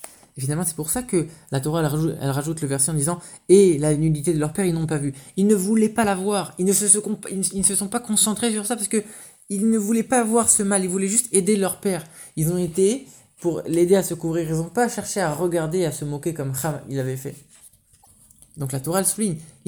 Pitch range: 140-195 Hz